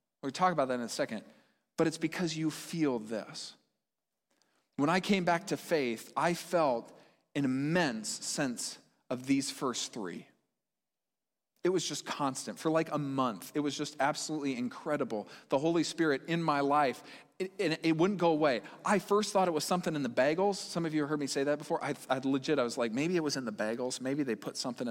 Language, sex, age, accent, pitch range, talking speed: English, male, 40-59, American, 145-200 Hz, 210 wpm